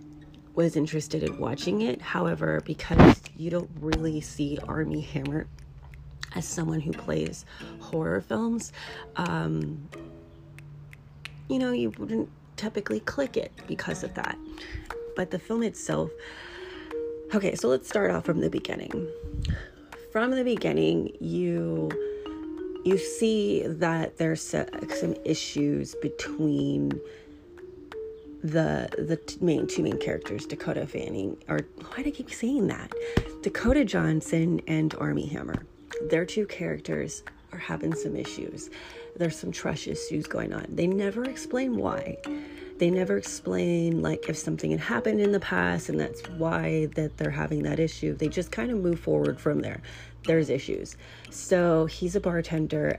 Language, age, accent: English, 30-49, American